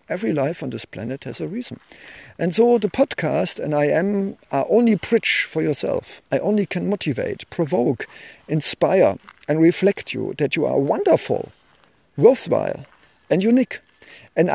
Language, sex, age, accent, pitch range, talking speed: English, male, 50-69, German, 140-210 Hz, 155 wpm